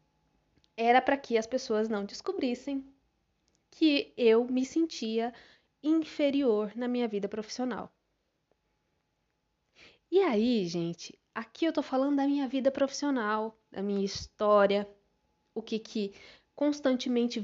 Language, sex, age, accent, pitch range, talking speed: Portuguese, female, 20-39, Brazilian, 210-275 Hz, 115 wpm